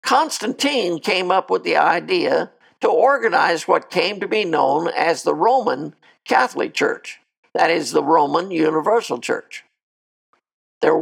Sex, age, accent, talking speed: male, 60-79, American, 135 wpm